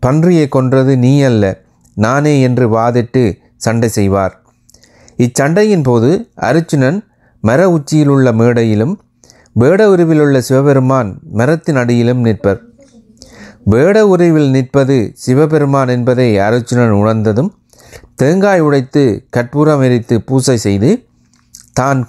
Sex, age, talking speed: male, 30-49, 90 wpm